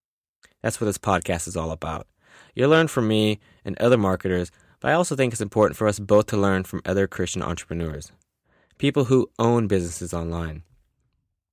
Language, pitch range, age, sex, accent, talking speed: English, 85-115 Hz, 20-39, male, American, 175 wpm